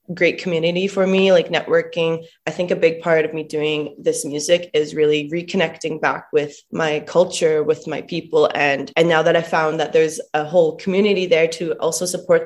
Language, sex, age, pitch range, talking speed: English, female, 20-39, 155-190 Hz, 195 wpm